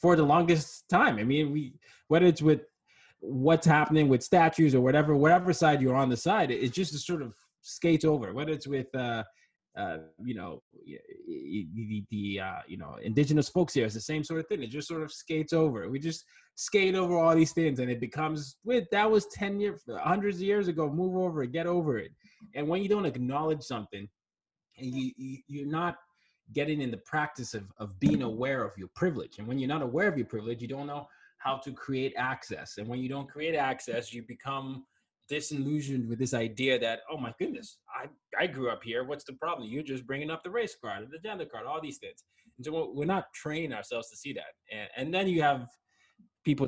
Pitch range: 125-165 Hz